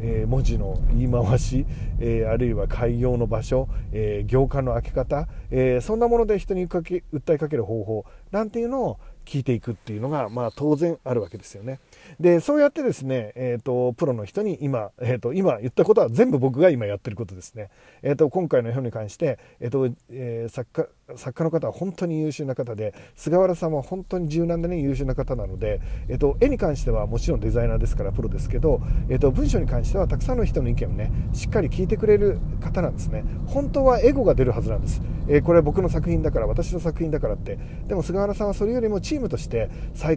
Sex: male